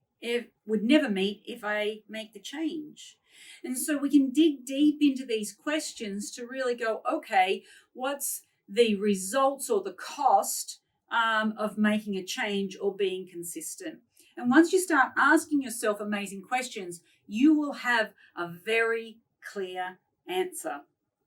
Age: 40-59